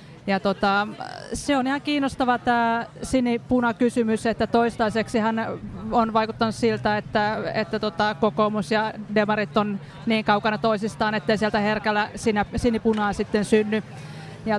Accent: native